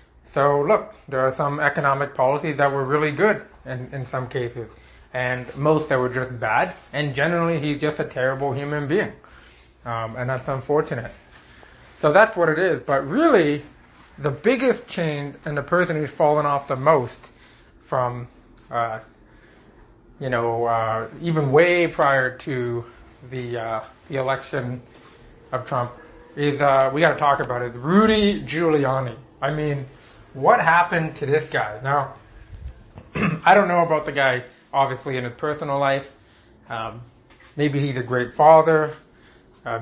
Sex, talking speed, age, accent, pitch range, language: male, 150 wpm, 30-49, American, 120-150 Hz, English